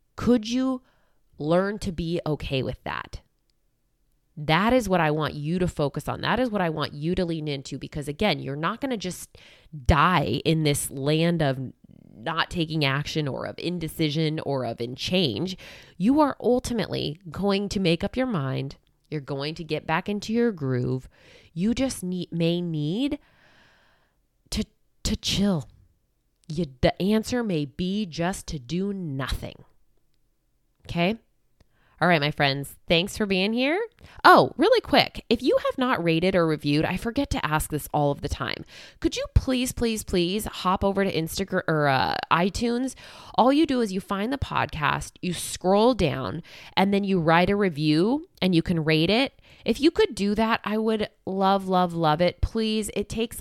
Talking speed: 180 wpm